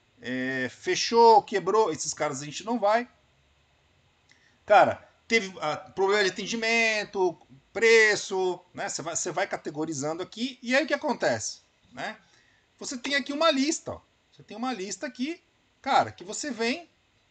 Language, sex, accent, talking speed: Portuguese, male, Brazilian, 150 wpm